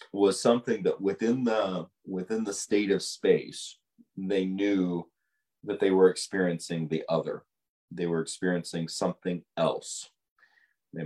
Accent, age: American, 30-49